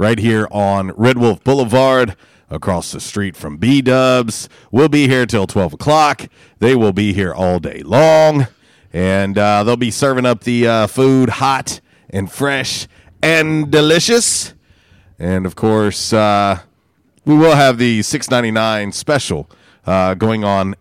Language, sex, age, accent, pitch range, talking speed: English, male, 40-59, American, 95-130 Hz, 155 wpm